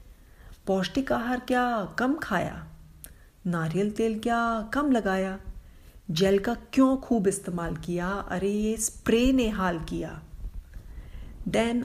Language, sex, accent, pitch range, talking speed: Hindi, female, native, 160-220 Hz, 115 wpm